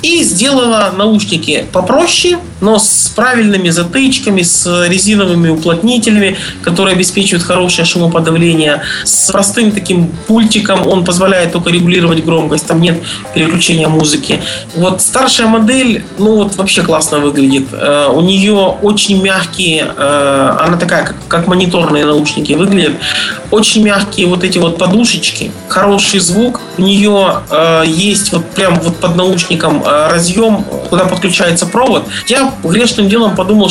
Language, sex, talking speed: Russian, male, 125 wpm